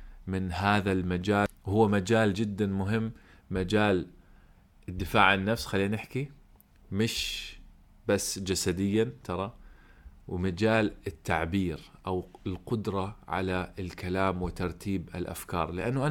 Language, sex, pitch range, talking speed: Arabic, male, 90-115 Hz, 95 wpm